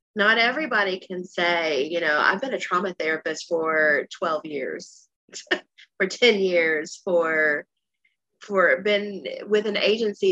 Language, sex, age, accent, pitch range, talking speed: English, female, 30-49, American, 165-215 Hz, 135 wpm